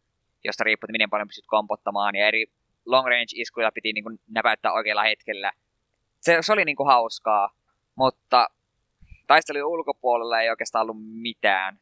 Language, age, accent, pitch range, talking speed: Finnish, 20-39, native, 105-125 Hz, 120 wpm